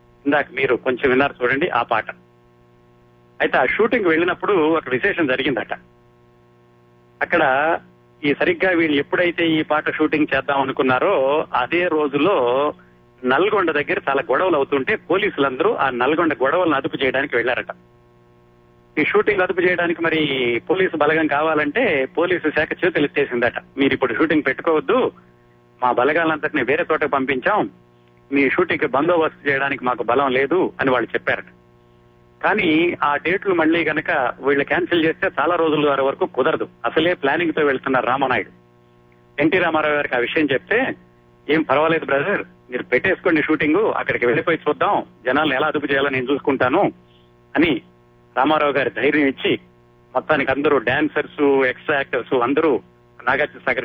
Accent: native